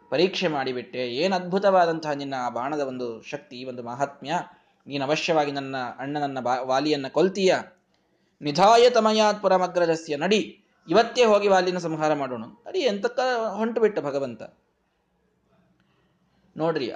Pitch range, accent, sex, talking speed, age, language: 145-205 Hz, native, male, 115 wpm, 20-39, Kannada